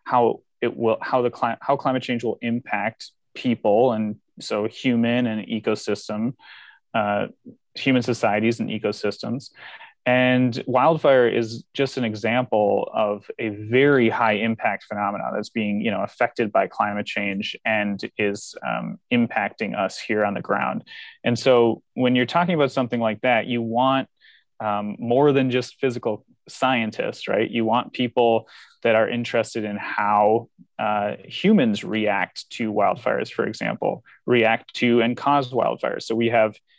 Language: English